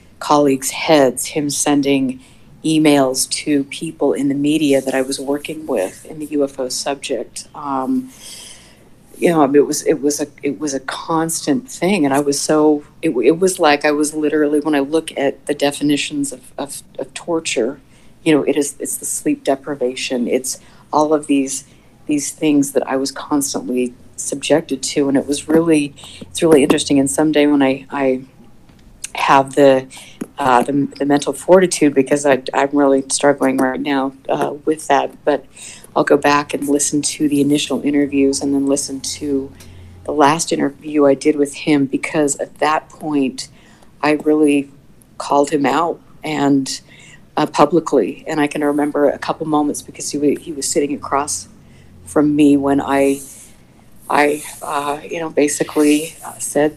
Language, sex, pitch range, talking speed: English, female, 135-150 Hz, 170 wpm